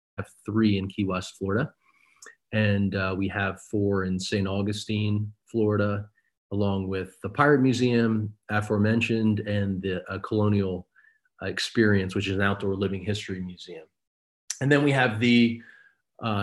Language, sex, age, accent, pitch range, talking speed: English, male, 30-49, American, 95-110 Hz, 150 wpm